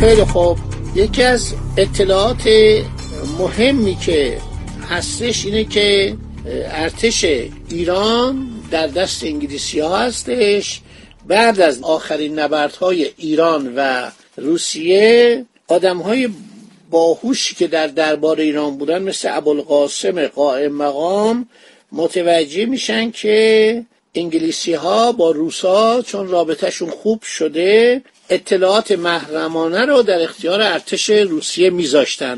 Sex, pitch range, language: male, 155-210 Hz, Persian